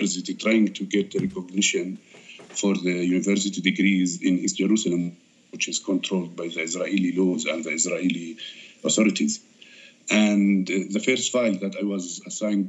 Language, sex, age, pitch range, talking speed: English, male, 50-69, 95-110 Hz, 145 wpm